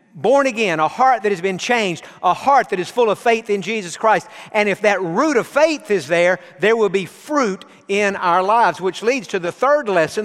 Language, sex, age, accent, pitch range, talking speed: English, male, 50-69, American, 175-215 Hz, 230 wpm